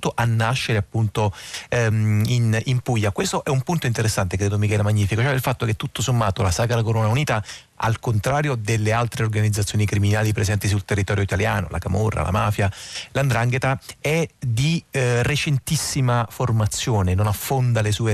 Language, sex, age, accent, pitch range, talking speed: Italian, male, 30-49, native, 105-130 Hz, 160 wpm